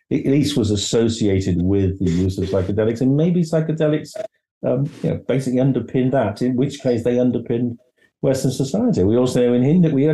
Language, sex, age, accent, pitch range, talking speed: English, male, 50-69, British, 100-130 Hz, 190 wpm